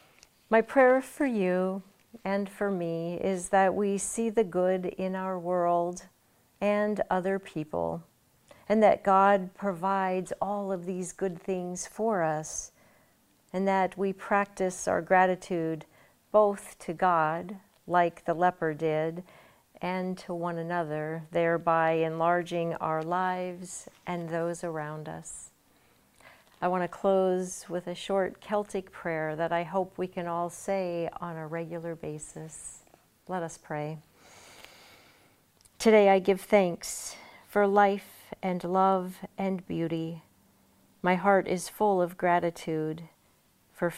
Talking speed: 130 wpm